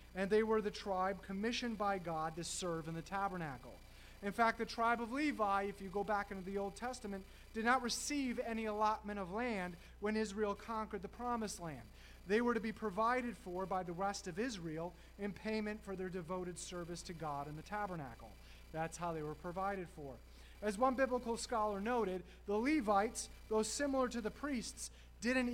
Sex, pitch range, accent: male, 185-245 Hz, American